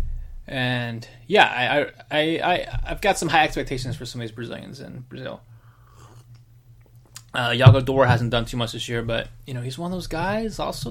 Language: English